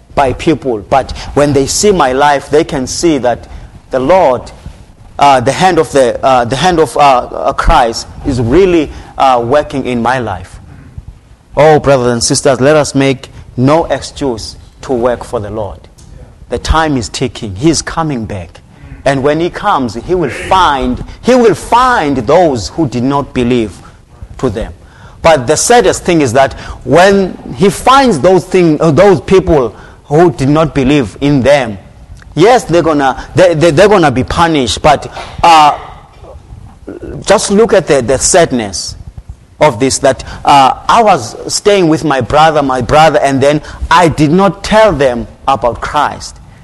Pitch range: 115-165 Hz